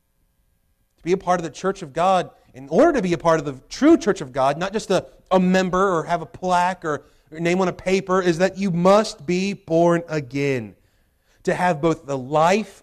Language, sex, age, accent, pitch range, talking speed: English, male, 30-49, American, 140-185 Hz, 220 wpm